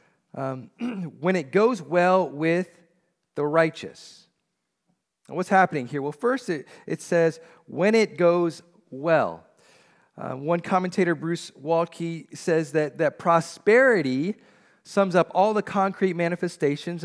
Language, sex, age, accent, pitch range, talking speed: English, male, 40-59, American, 150-190 Hz, 120 wpm